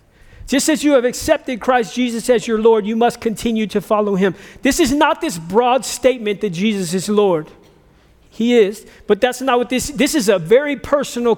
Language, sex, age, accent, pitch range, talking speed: English, male, 50-69, American, 225-290 Hz, 200 wpm